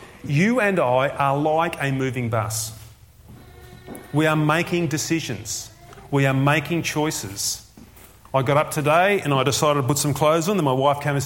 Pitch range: 125-195 Hz